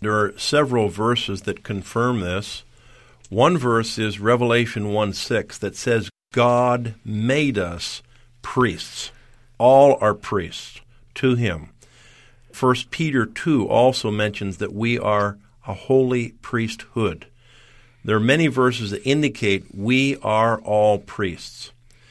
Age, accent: 50-69, American